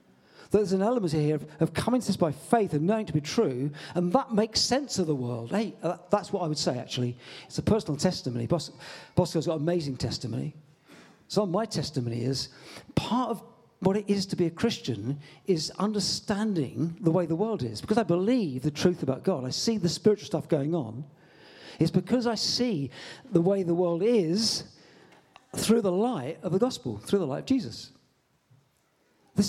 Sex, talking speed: male, 190 wpm